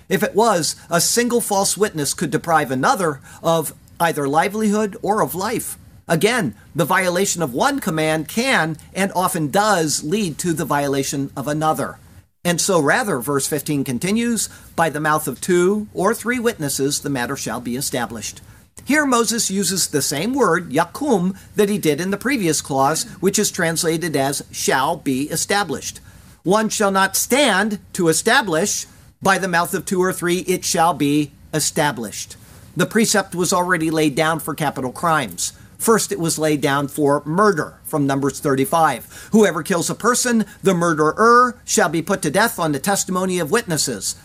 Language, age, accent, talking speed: English, 50-69, American, 170 wpm